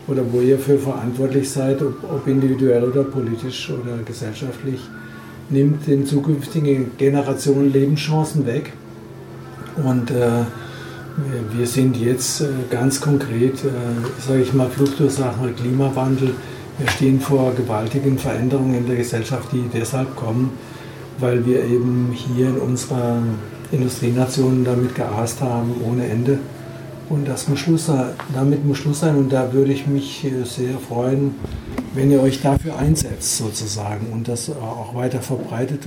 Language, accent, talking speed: German, German, 135 wpm